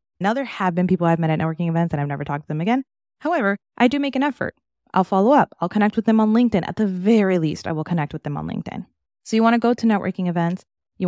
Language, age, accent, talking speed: English, 20-39, American, 280 wpm